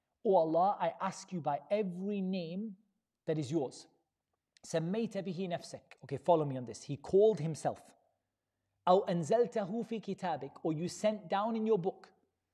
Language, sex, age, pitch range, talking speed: English, male, 40-59, 165-230 Hz, 130 wpm